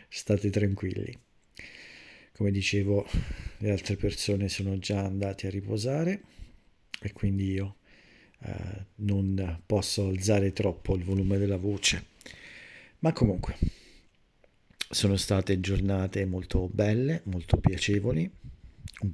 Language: Italian